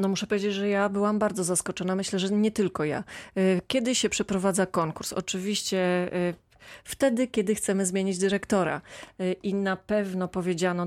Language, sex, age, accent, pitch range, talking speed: Polish, female, 30-49, native, 180-215 Hz, 150 wpm